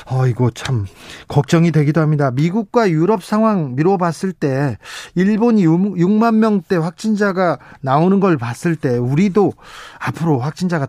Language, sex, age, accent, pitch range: Korean, male, 40-59, native, 135-180 Hz